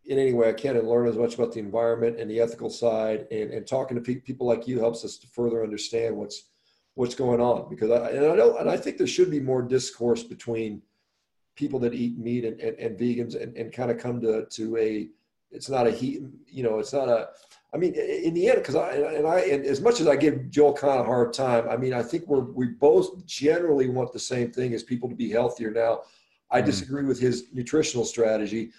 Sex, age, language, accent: male, 40-59, English, American